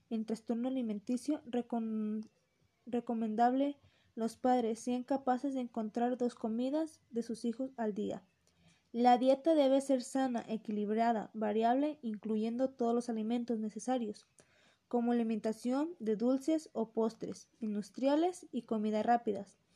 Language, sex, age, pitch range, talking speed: Spanish, female, 20-39, 225-260 Hz, 120 wpm